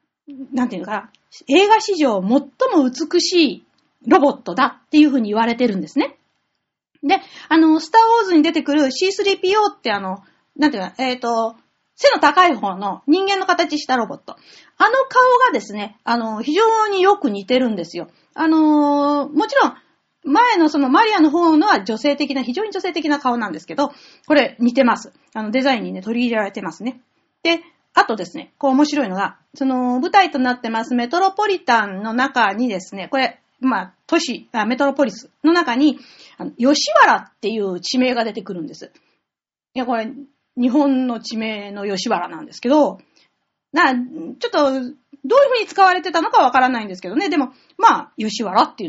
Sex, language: female, Japanese